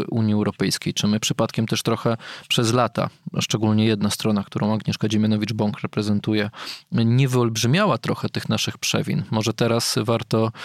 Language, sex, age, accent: Polish, male, 20-39, native